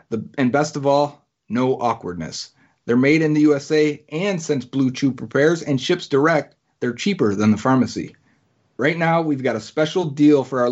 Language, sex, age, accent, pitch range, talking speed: English, male, 30-49, American, 120-150 Hz, 185 wpm